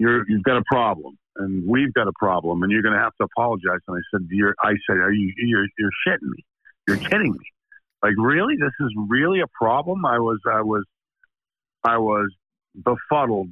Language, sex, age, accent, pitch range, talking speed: English, male, 50-69, American, 100-145 Hz, 200 wpm